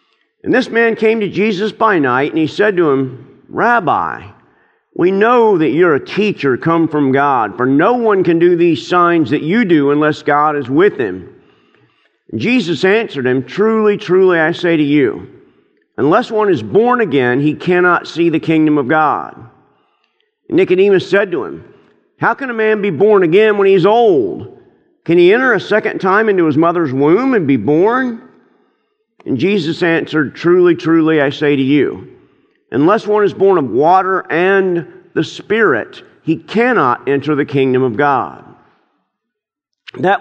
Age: 50-69